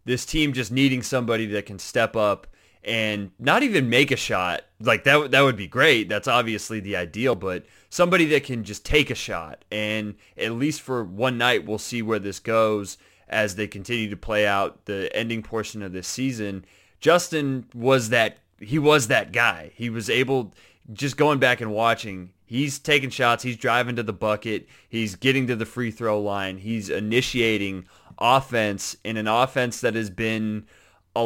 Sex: male